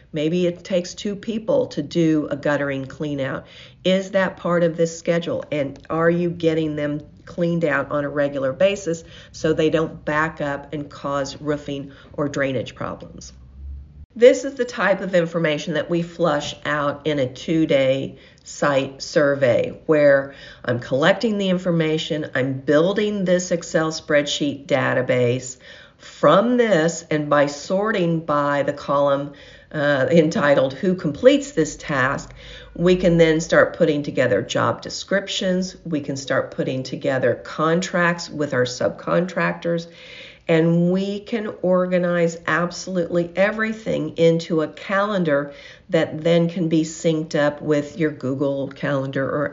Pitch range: 145-180 Hz